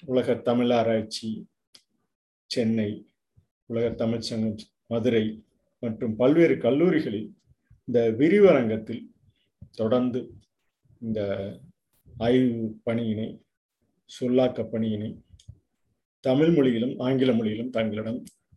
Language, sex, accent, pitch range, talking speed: Tamil, male, native, 110-140 Hz, 75 wpm